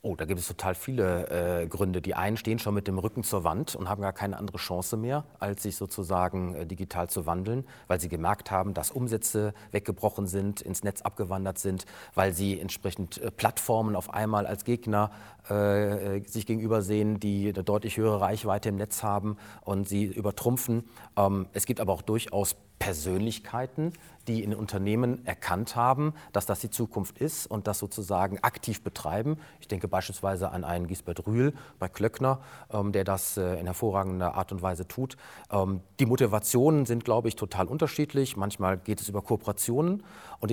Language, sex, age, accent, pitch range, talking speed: German, male, 40-59, German, 95-115 Hz, 180 wpm